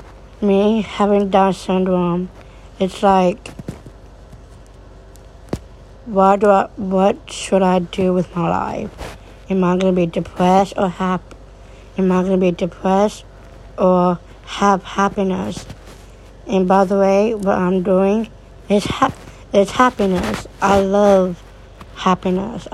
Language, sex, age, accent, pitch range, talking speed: English, female, 60-79, American, 175-195 Hz, 120 wpm